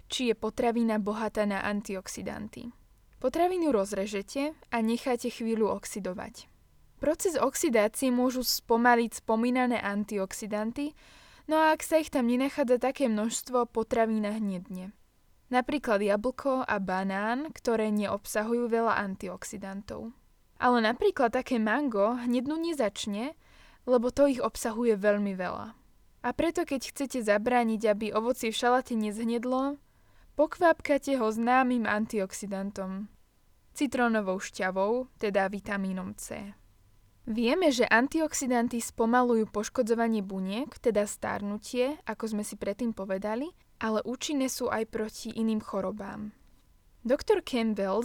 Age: 10-29